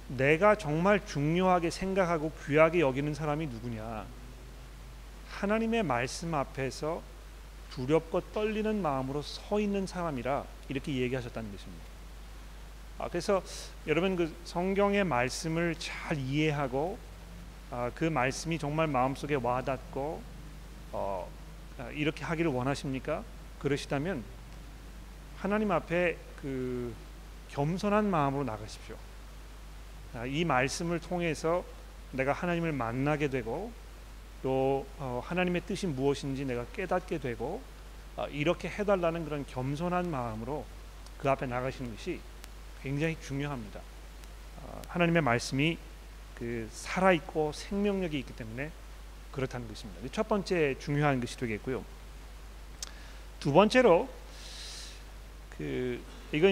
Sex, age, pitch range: male, 40-59, 125-170 Hz